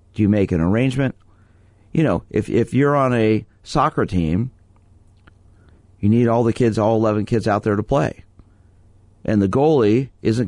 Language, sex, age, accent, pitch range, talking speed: English, male, 50-69, American, 95-115 Hz, 170 wpm